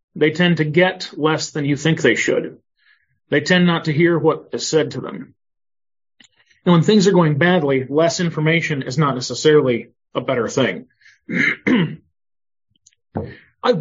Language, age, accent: English, 40-59, American